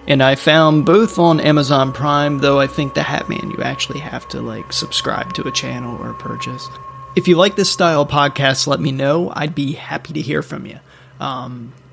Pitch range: 135-170 Hz